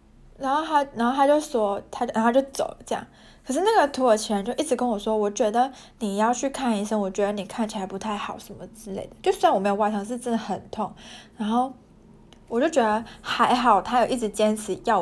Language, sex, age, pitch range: Chinese, female, 20-39, 205-245 Hz